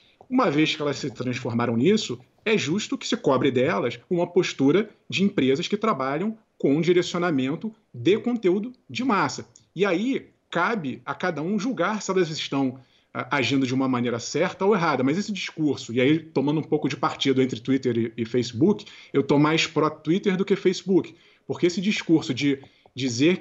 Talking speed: 175 wpm